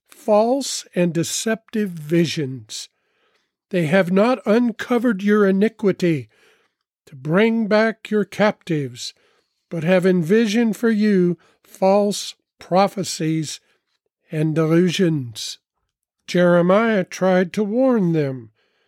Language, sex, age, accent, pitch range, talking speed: English, male, 50-69, American, 175-235 Hz, 90 wpm